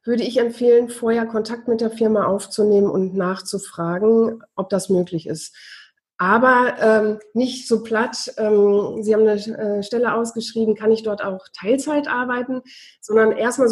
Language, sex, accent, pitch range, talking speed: German, female, German, 195-230 Hz, 155 wpm